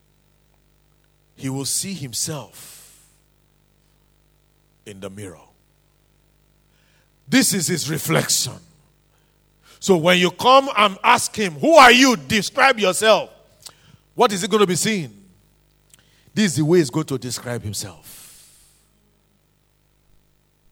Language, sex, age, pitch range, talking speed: English, male, 50-69, 115-155 Hz, 115 wpm